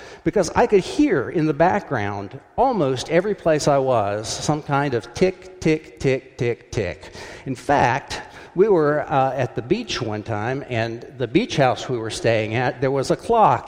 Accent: American